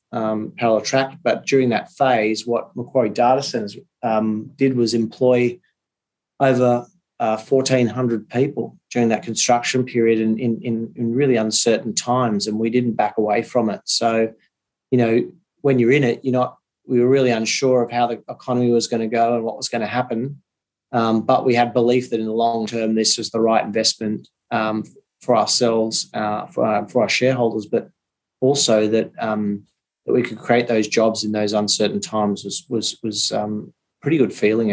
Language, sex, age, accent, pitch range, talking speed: English, male, 30-49, Australian, 110-125 Hz, 190 wpm